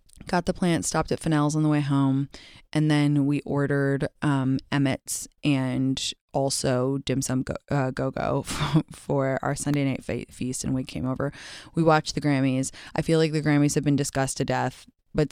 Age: 20-39